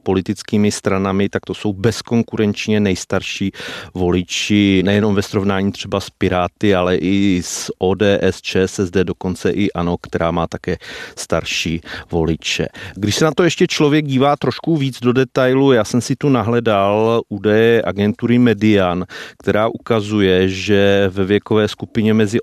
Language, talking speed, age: Czech, 140 wpm, 30-49